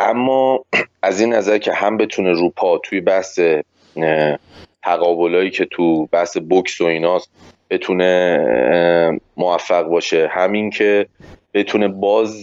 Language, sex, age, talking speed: Persian, male, 30-49, 115 wpm